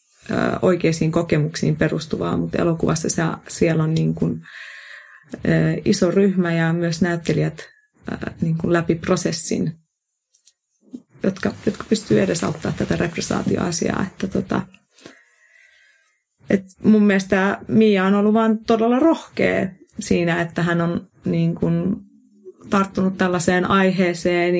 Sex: female